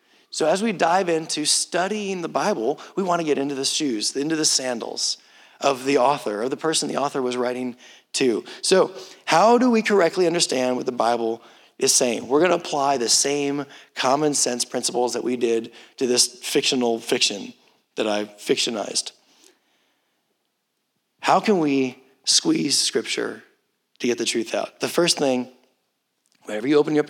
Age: 30-49